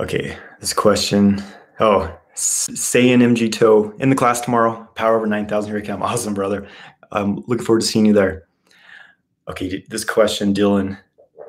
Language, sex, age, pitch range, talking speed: English, male, 20-39, 105-130 Hz, 165 wpm